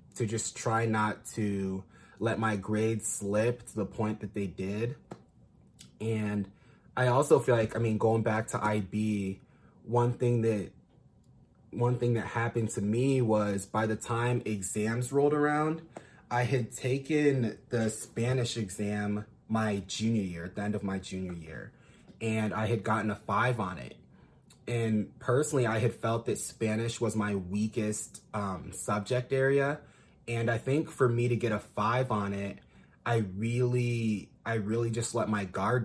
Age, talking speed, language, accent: 20-39, 165 wpm, English, American